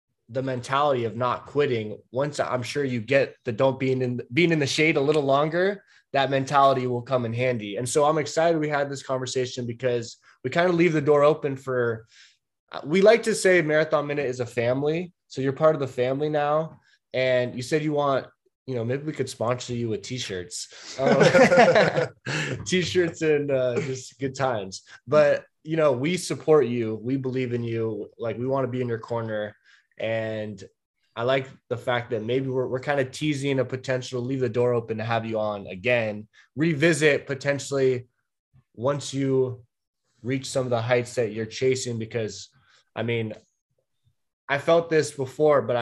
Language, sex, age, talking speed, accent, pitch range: English, male, 20-39, 185 wpm, American, 115-140 Hz